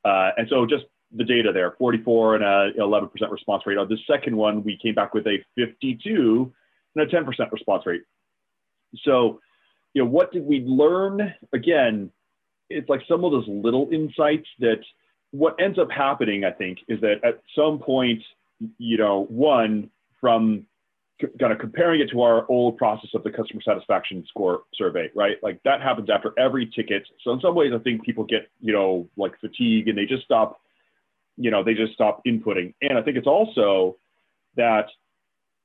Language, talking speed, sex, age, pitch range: English, 180 wpm, male, 30-49, 110-145 Hz